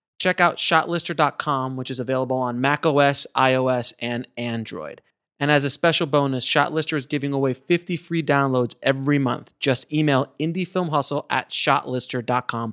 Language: English